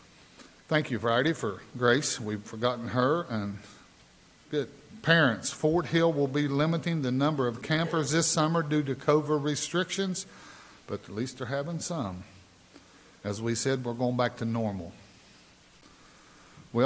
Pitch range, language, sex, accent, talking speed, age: 110-145 Hz, English, male, American, 145 wpm, 50-69